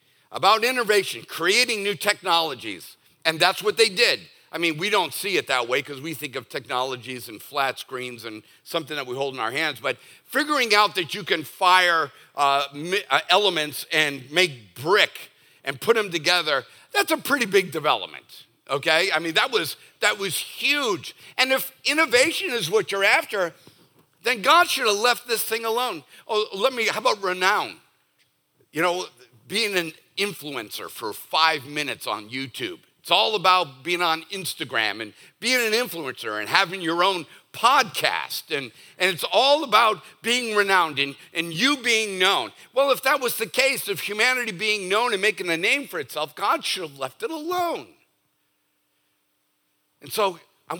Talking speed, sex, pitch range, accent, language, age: 170 wpm, male, 150-235 Hz, American, English, 50-69